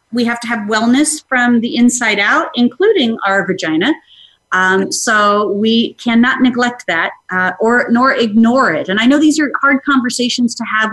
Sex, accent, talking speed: female, American, 175 wpm